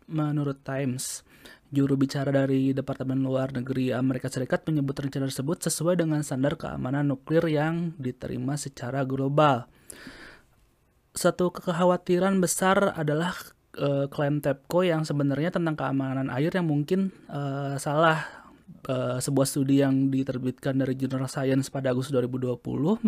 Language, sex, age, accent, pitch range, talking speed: Indonesian, male, 20-39, native, 130-155 Hz, 125 wpm